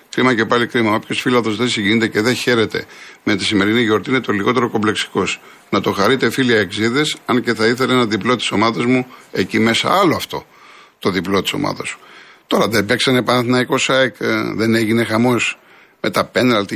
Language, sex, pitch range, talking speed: Greek, male, 110-175 Hz, 185 wpm